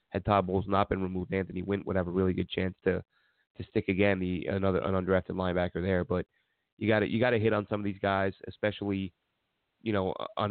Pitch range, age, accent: 95-105 Hz, 30-49, American